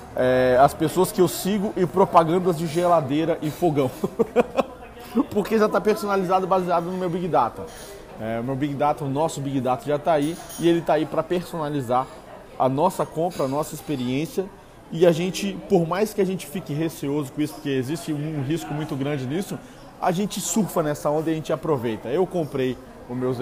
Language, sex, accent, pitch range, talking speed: Portuguese, male, Brazilian, 135-180 Hz, 195 wpm